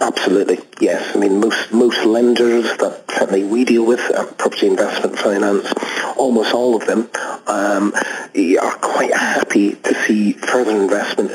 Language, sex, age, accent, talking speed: English, male, 40-59, British, 150 wpm